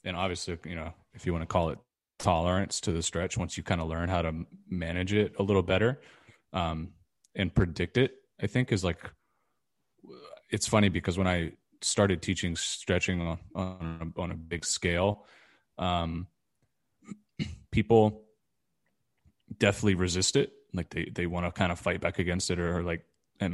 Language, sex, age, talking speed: English, male, 20-39, 175 wpm